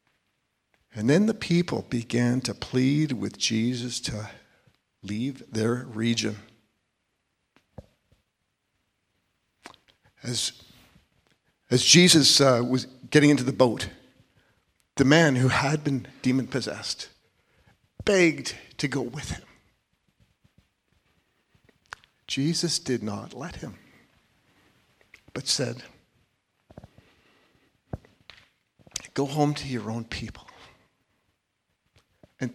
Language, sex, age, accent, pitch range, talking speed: English, male, 50-69, American, 115-145 Hz, 85 wpm